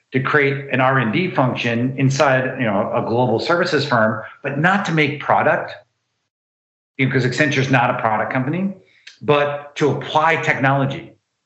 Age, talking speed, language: 50-69, 155 wpm, English